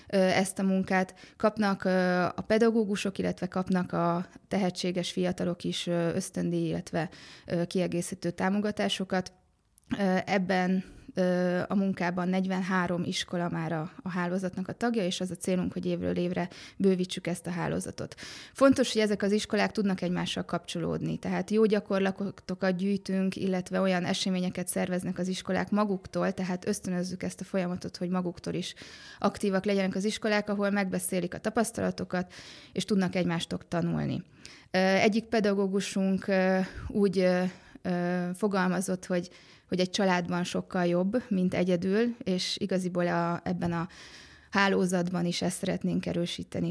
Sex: female